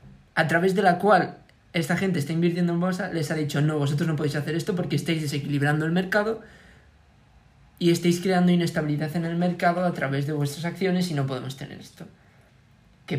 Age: 20-39